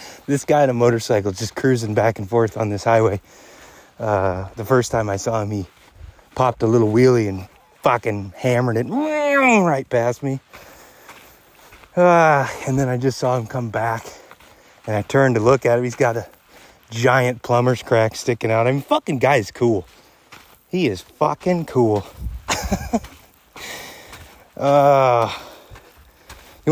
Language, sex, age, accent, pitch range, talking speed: English, male, 30-49, American, 110-145 Hz, 155 wpm